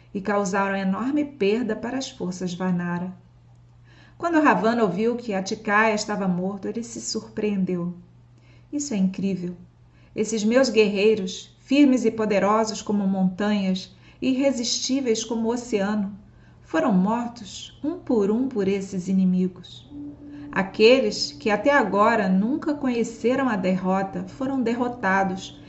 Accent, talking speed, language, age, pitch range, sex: Brazilian, 120 wpm, Portuguese, 40-59, 190-230 Hz, female